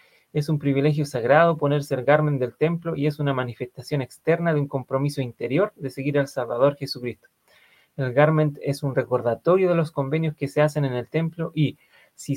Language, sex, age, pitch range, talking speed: Spanish, male, 30-49, 135-155 Hz, 190 wpm